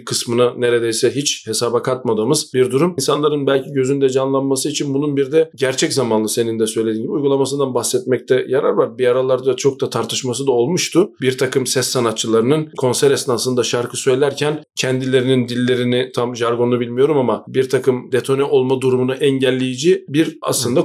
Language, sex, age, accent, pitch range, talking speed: Turkish, male, 40-59, native, 125-155 Hz, 155 wpm